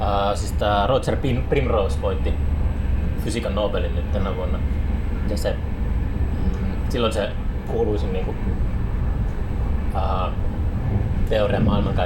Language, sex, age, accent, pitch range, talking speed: Finnish, male, 20-39, native, 80-105 Hz, 95 wpm